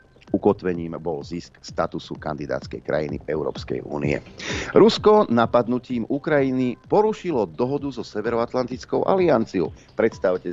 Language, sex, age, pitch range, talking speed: Slovak, male, 40-59, 90-120 Hz, 95 wpm